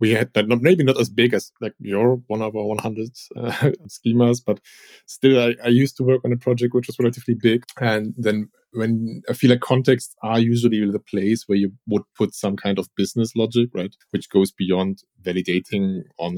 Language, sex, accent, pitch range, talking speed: English, male, German, 95-120 Hz, 200 wpm